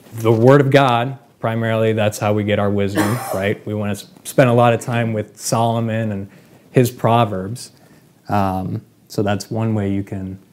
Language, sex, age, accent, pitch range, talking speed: English, male, 20-39, American, 105-130 Hz, 180 wpm